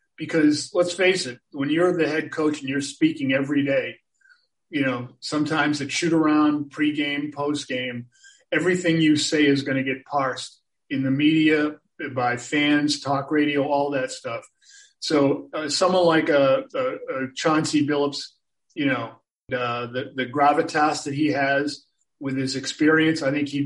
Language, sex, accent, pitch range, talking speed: English, male, American, 135-165 Hz, 160 wpm